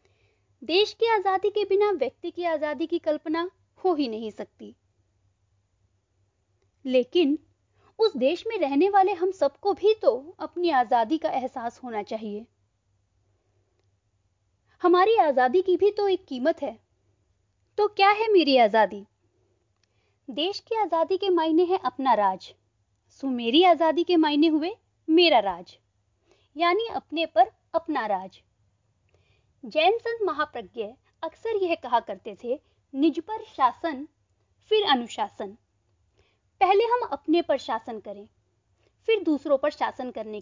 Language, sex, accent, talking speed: Hindi, female, native, 130 wpm